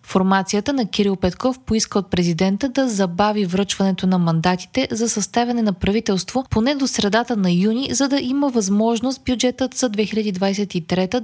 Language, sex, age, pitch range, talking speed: Bulgarian, female, 20-39, 190-250 Hz, 150 wpm